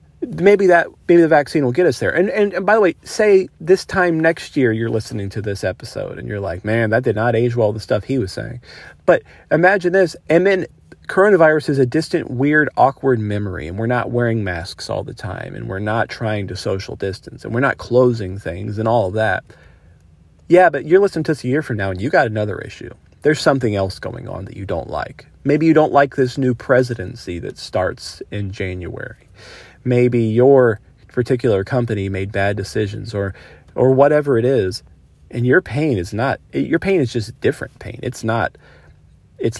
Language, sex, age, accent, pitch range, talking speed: English, male, 40-59, American, 100-135 Hz, 210 wpm